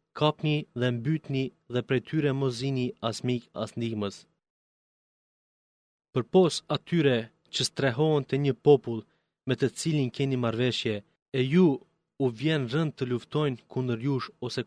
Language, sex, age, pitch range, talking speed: Greek, male, 30-49, 120-145 Hz, 130 wpm